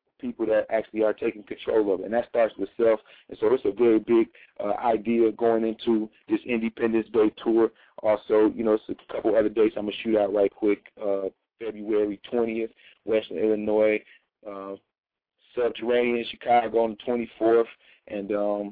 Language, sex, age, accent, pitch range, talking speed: English, male, 30-49, American, 110-120 Hz, 175 wpm